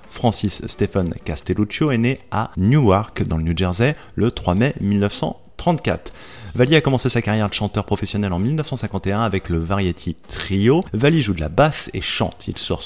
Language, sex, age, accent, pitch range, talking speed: French, male, 30-49, French, 90-120 Hz, 175 wpm